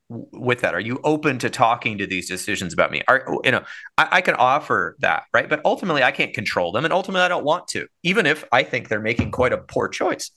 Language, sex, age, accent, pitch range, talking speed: English, male, 30-49, American, 110-150 Hz, 250 wpm